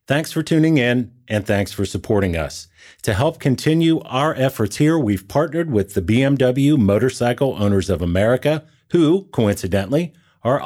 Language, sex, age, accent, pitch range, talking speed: English, male, 40-59, American, 95-135 Hz, 150 wpm